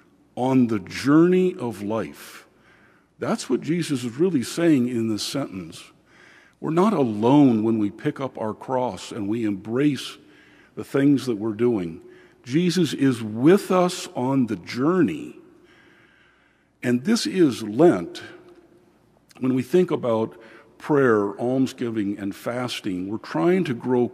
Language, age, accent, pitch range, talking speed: English, 50-69, American, 110-150 Hz, 135 wpm